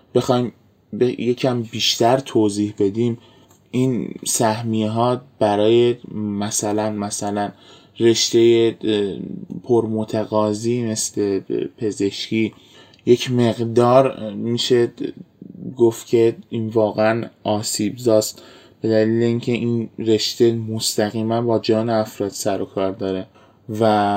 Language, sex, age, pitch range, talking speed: Persian, male, 20-39, 105-120 Hz, 95 wpm